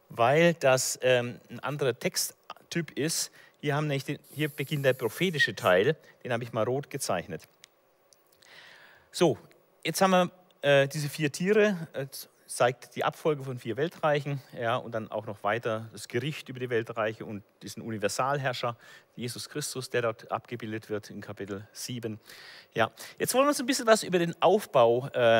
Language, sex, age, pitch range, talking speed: German, male, 40-59, 125-175 Hz, 165 wpm